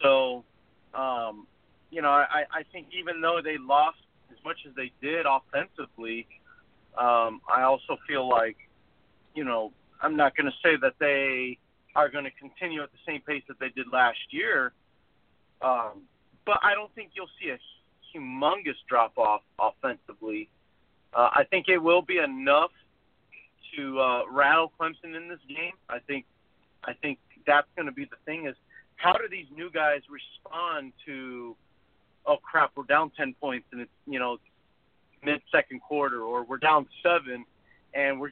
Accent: American